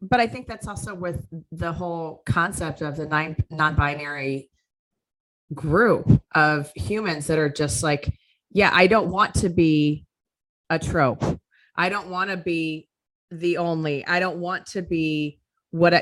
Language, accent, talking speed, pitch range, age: English, American, 155 wpm, 150-175 Hz, 30-49